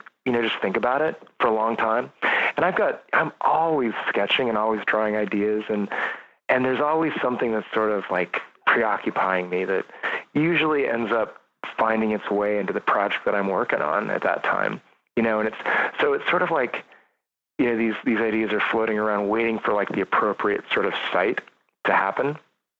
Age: 30-49